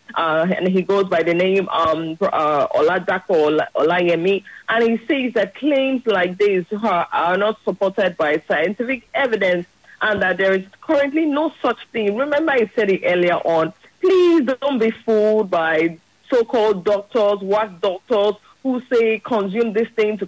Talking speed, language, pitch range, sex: 155 wpm, English, 190-250 Hz, female